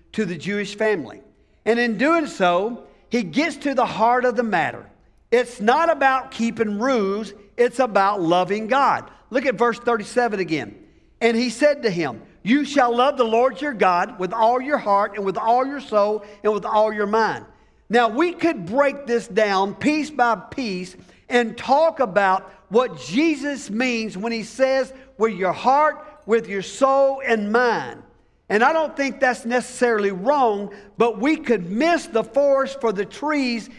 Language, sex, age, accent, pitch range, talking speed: English, male, 50-69, American, 205-270 Hz, 175 wpm